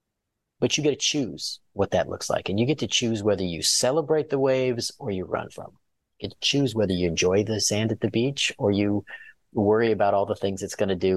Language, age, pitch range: English, 30-49, 95-115 Hz